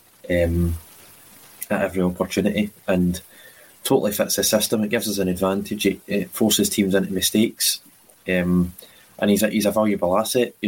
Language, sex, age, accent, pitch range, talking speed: English, male, 20-39, British, 95-105 Hz, 165 wpm